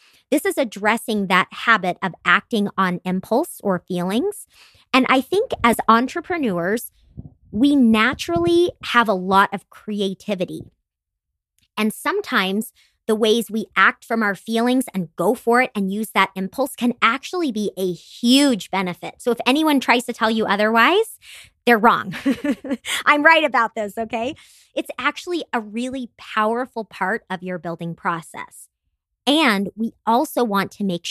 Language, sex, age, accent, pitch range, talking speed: English, male, 30-49, American, 190-250 Hz, 150 wpm